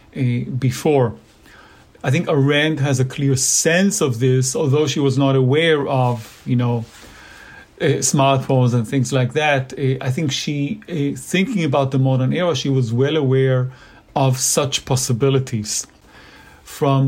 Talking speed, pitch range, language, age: 150 wpm, 130-145 Hz, English, 40-59